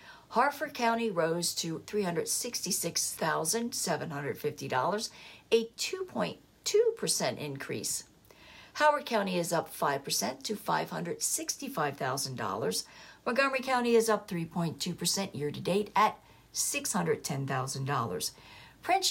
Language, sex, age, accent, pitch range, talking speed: English, female, 60-79, American, 165-230 Hz, 75 wpm